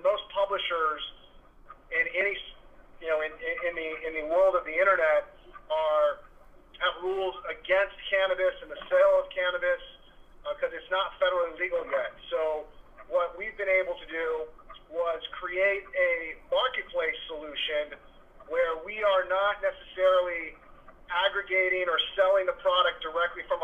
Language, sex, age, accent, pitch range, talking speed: English, male, 30-49, American, 175-265 Hz, 145 wpm